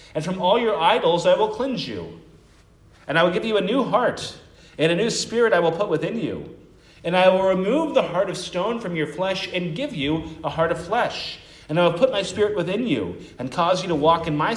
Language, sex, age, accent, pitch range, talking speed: English, male, 40-59, American, 145-180 Hz, 245 wpm